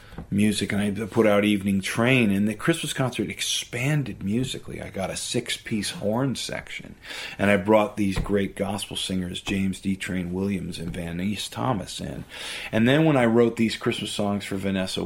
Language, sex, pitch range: English, male, 95-110 Hz